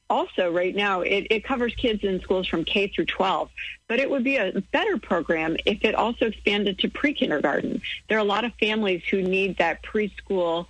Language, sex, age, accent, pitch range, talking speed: English, female, 40-59, American, 175-225 Hz, 200 wpm